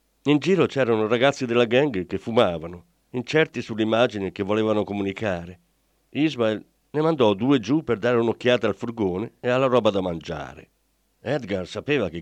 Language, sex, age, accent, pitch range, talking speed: Italian, male, 50-69, native, 105-155 Hz, 150 wpm